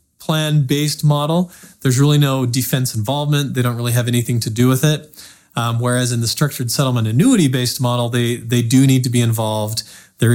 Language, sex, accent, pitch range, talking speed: English, male, American, 120-145 Hz, 190 wpm